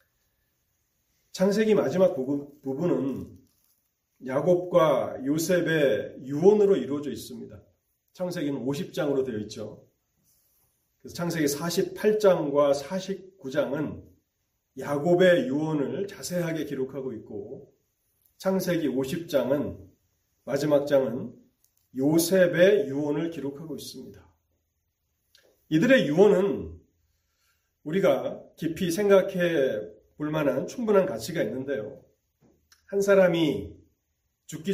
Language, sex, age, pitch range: Korean, male, 40-59, 115-180 Hz